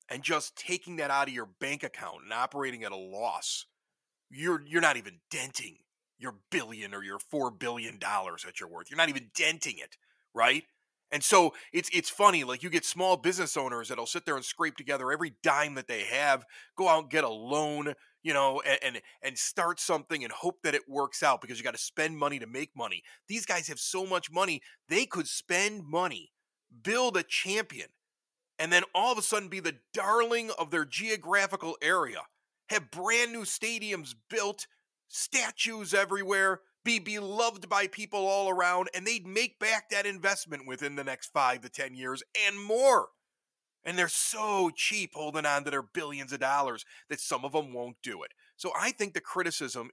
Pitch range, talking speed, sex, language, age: 145-210 Hz, 195 wpm, male, English, 30-49